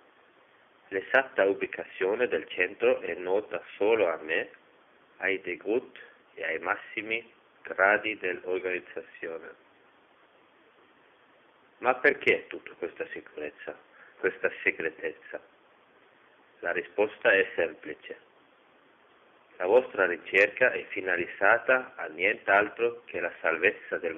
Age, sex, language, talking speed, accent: 40-59, male, Italian, 95 wpm, native